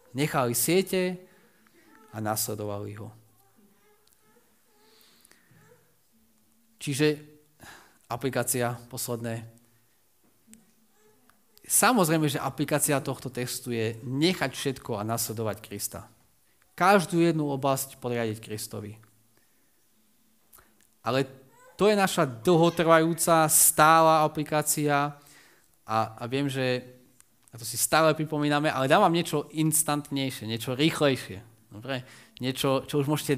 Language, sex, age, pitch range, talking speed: Slovak, male, 30-49, 115-155 Hz, 90 wpm